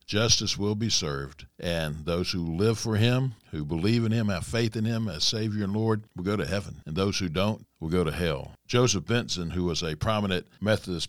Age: 60-79